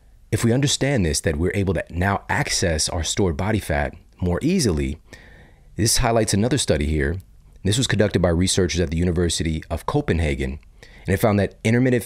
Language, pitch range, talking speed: English, 80-105 Hz, 180 wpm